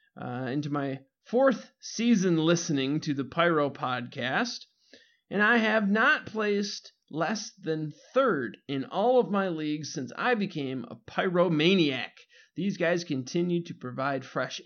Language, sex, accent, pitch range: English, male, American, 140-195 Hz